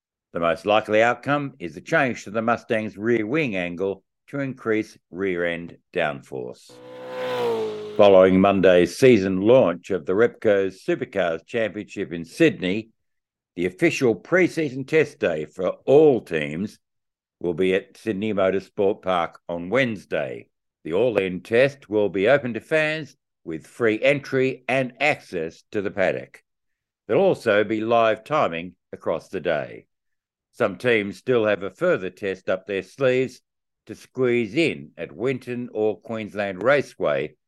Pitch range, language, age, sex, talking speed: 95-130 Hz, English, 60-79, male, 140 wpm